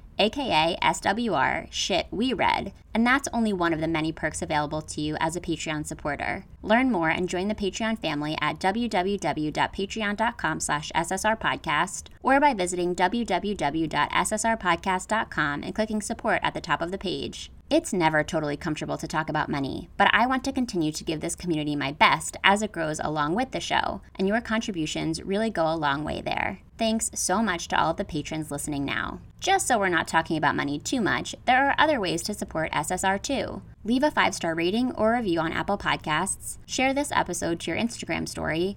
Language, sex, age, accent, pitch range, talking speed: English, female, 20-39, American, 160-220 Hz, 185 wpm